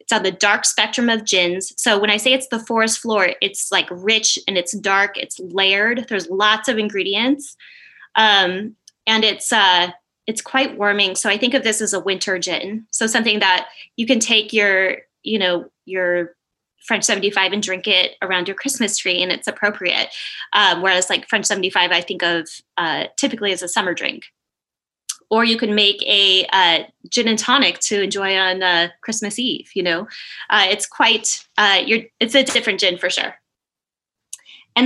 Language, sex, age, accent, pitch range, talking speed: English, female, 10-29, American, 195-230 Hz, 185 wpm